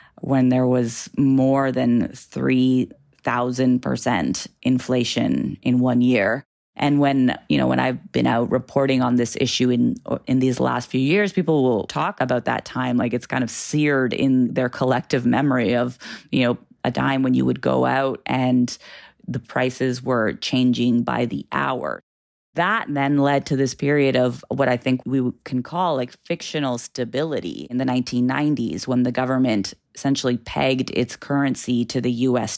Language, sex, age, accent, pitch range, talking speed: English, female, 30-49, American, 120-135 Hz, 165 wpm